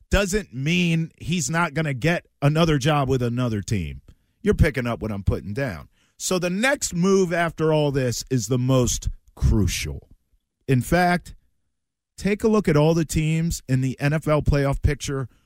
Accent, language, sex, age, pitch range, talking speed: American, English, male, 50-69, 100-165 Hz, 170 wpm